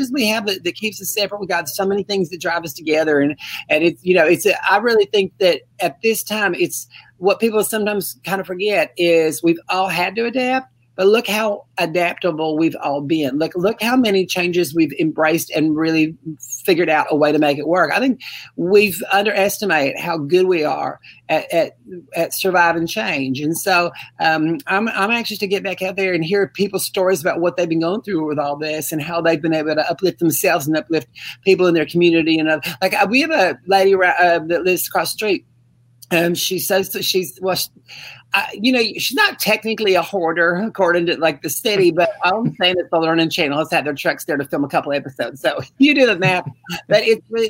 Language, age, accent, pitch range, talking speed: English, 40-59, American, 160-200 Hz, 225 wpm